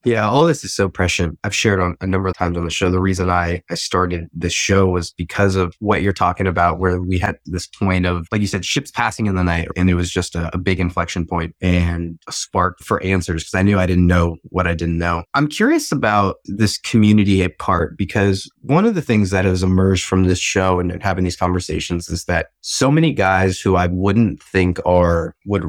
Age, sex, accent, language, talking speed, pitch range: 20-39, male, American, English, 235 wpm, 90-105 Hz